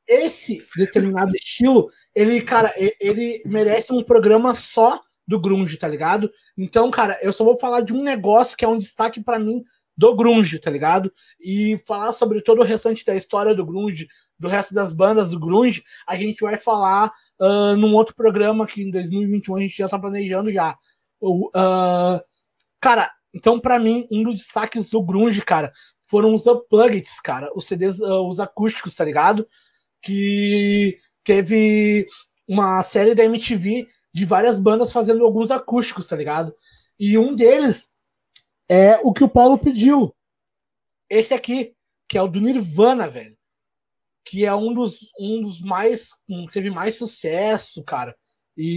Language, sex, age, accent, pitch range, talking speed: Portuguese, male, 20-39, Brazilian, 195-230 Hz, 155 wpm